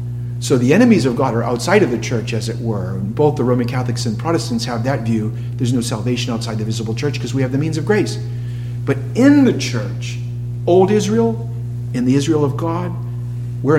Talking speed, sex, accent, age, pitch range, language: 210 wpm, male, American, 50-69, 120-135 Hz, English